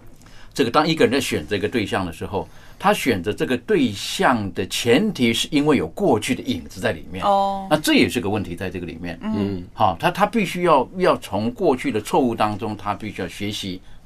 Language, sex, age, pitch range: Chinese, male, 50-69, 95-130 Hz